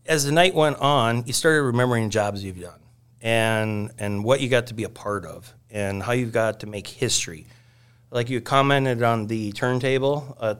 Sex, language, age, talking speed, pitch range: male, English, 30-49, 200 wpm, 105-120 Hz